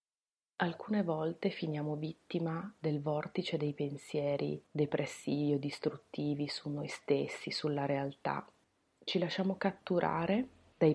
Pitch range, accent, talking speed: 150-180 Hz, native, 110 wpm